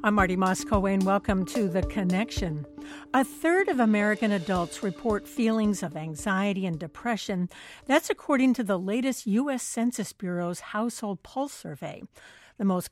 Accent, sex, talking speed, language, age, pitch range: American, female, 150 wpm, English, 60-79, 185-235 Hz